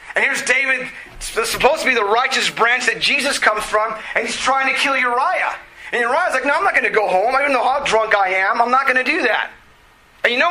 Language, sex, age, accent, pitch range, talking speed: English, male, 30-49, American, 170-255 Hz, 255 wpm